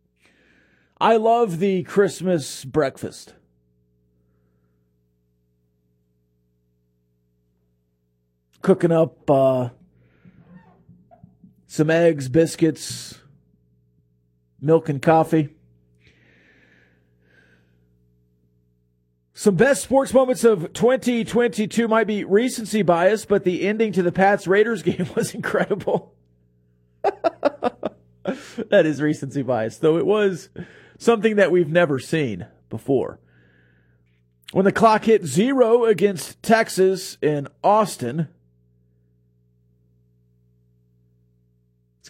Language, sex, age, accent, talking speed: English, male, 40-59, American, 80 wpm